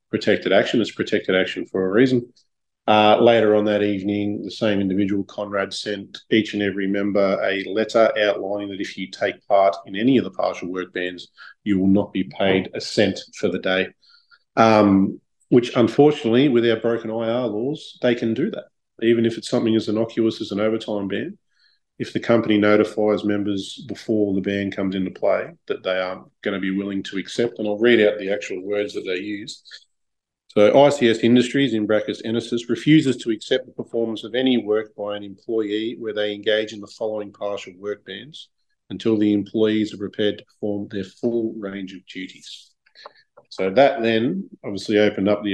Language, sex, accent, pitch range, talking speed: English, male, Australian, 100-115 Hz, 190 wpm